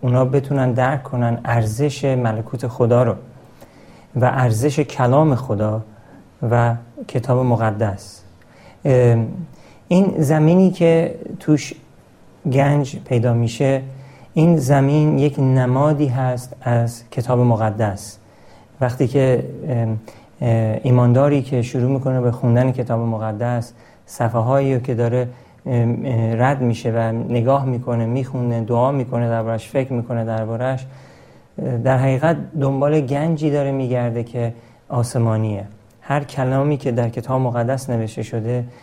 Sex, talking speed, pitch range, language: male, 110 wpm, 115-140 Hz, Persian